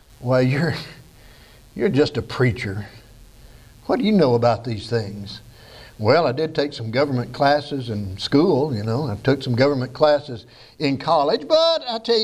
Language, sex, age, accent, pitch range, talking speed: English, male, 60-79, American, 140-220 Hz, 170 wpm